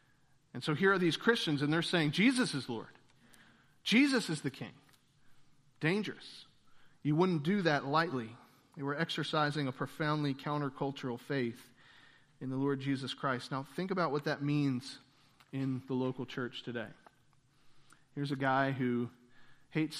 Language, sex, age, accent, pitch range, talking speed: English, male, 40-59, American, 140-175 Hz, 150 wpm